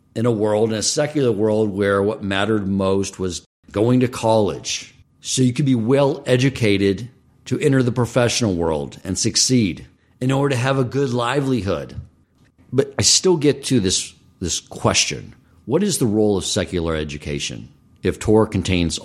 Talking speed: 165 wpm